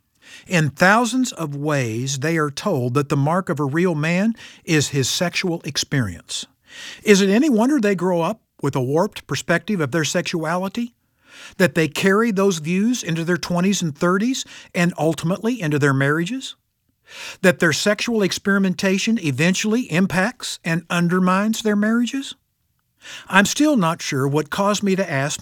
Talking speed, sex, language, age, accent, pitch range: 155 wpm, male, English, 60-79, American, 140-195 Hz